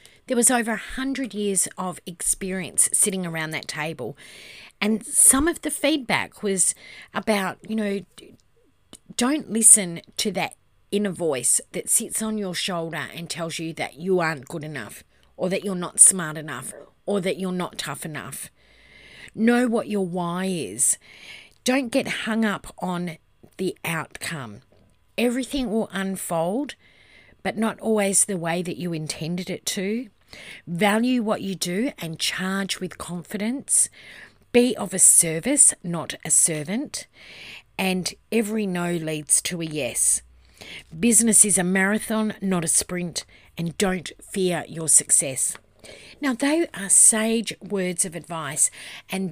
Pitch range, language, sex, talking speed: 165-215 Hz, English, female, 145 wpm